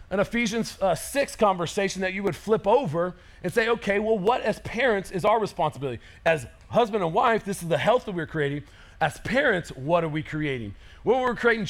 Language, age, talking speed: English, 40-59, 205 wpm